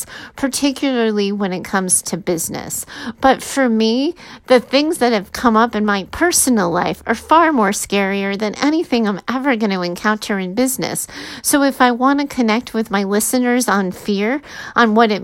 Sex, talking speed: female, 175 wpm